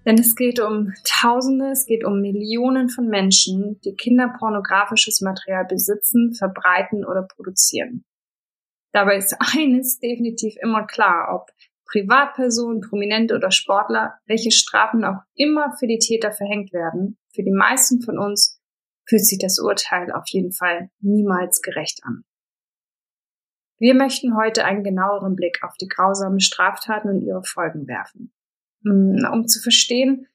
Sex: female